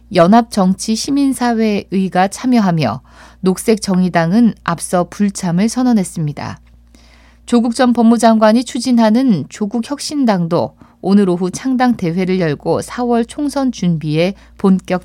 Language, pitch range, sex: Korean, 170-230 Hz, female